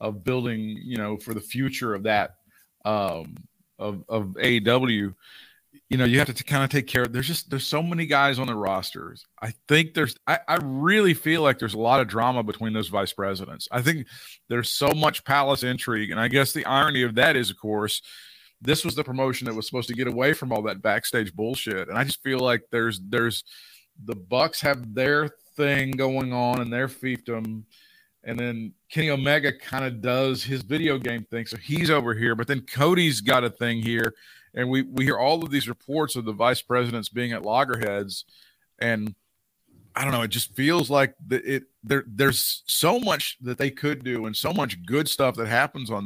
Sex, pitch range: male, 115-140 Hz